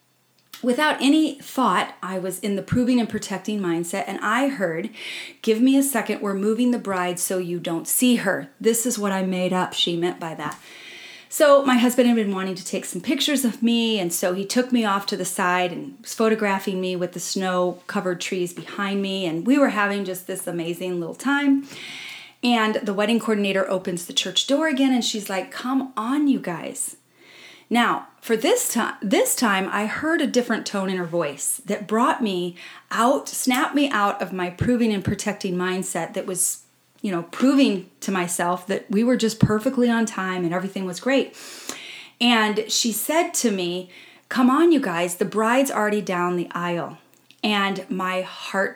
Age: 30-49